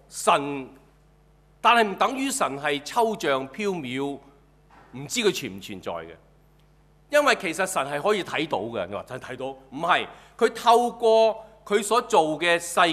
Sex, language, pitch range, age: male, Chinese, 155-225 Hz, 40-59